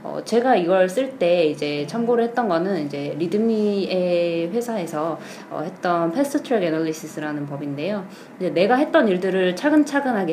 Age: 20-39